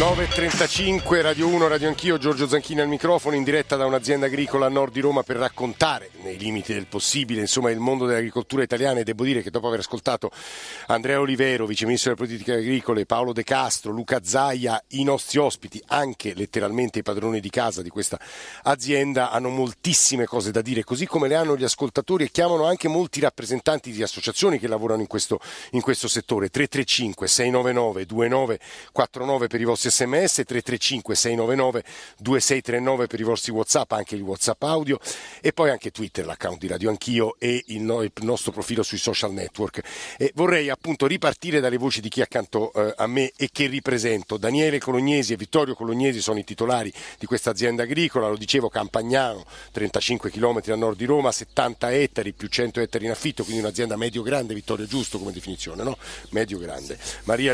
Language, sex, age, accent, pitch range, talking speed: Italian, male, 50-69, native, 110-140 Hz, 175 wpm